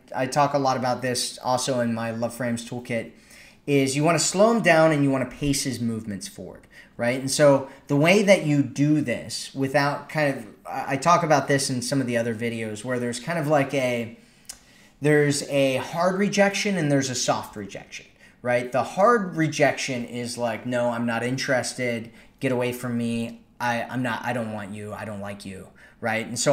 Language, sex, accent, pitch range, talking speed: English, male, American, 120-145 Hz, 205 wpm